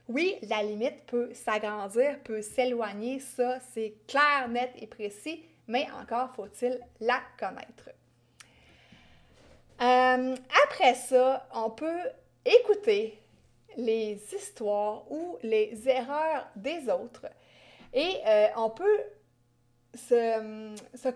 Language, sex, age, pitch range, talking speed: French, female, 30-49, 220-290 Hz, 105 wpm